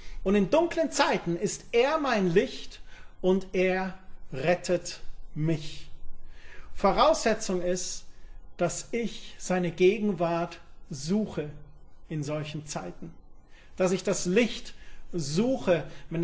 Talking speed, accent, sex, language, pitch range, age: 105 wpm, German, male, German, 170-215 Hz, 40-59